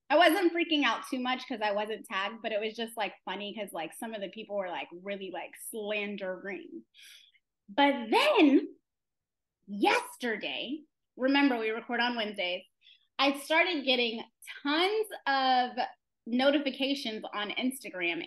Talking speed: 140 wpm